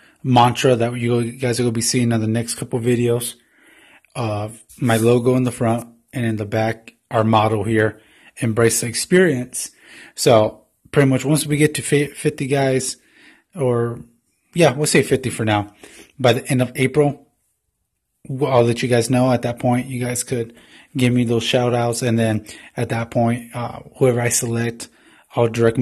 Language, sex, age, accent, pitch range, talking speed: English, male, 20-39, American, 115-130 Hz, 180 wpm